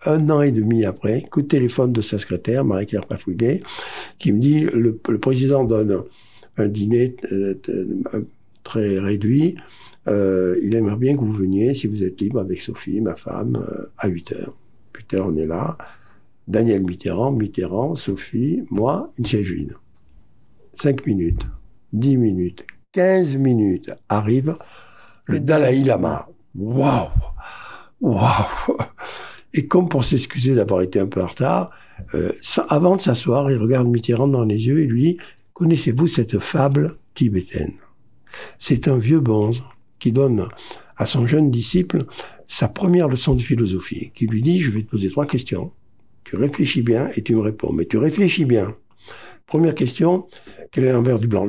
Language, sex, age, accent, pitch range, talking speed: French, male, 60-79, French, 105-150 Hz, 160 wpm